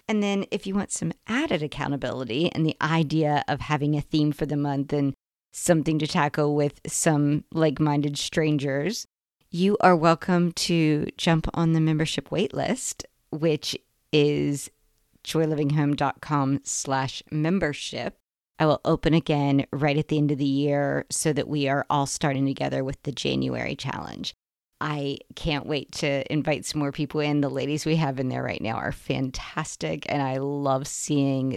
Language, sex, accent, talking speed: English, female, American, 160 wpm